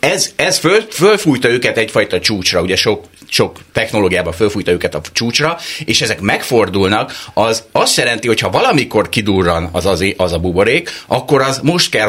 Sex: male